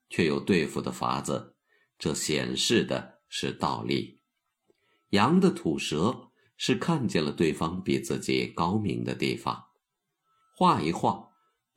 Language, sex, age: Chinese, male, 50-69